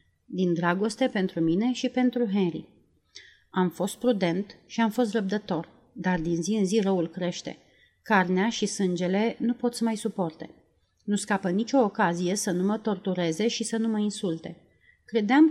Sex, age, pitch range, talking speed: female, 30-49, 180-225 Hz, 165 wpm